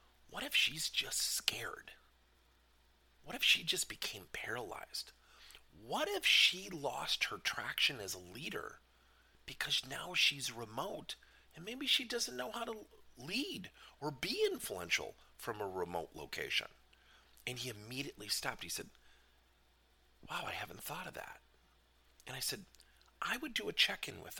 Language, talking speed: English, 150 wpm